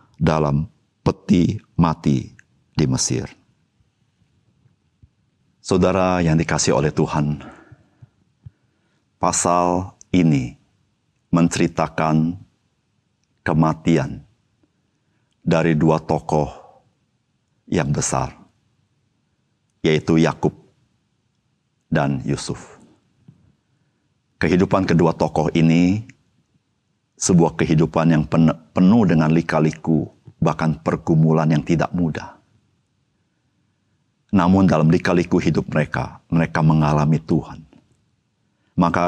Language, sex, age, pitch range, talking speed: Indonesian, male, 50-69, 80-90 Hz, 70 wpm